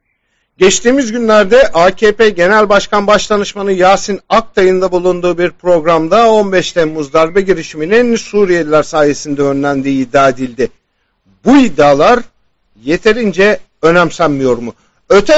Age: 50-69